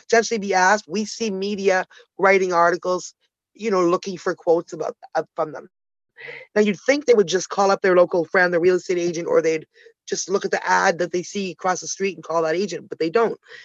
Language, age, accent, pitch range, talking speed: English, 30-49, American, 180-240 Hz, 230 wpm